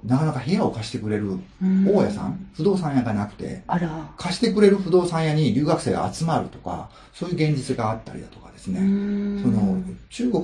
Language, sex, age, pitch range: Japanese, male, 40-59, 115-185 Hz